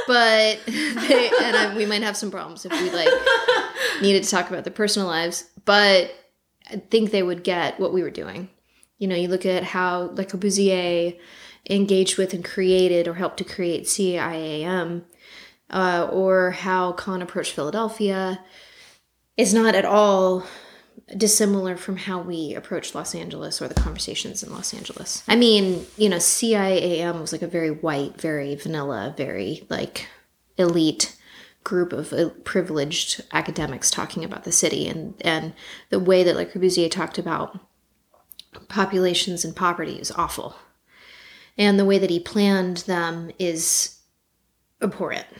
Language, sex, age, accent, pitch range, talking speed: English, female, 20-39, American, 175-205 Hz, 155 wpm